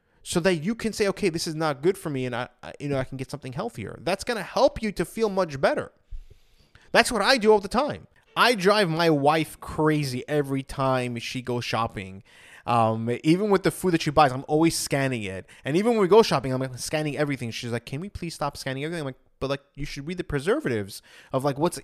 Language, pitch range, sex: English, 135-190 Hz, male